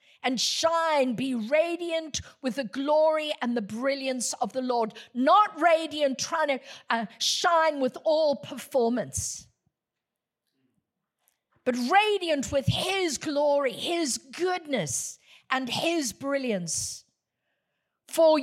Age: 50-69